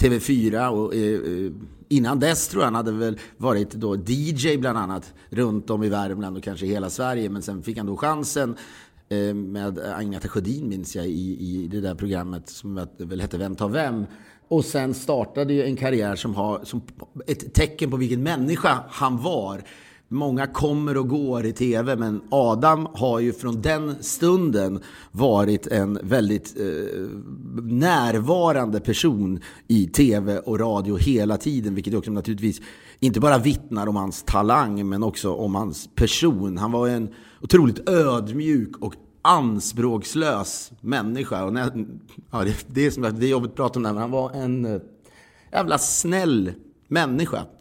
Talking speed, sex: 150 wpm, male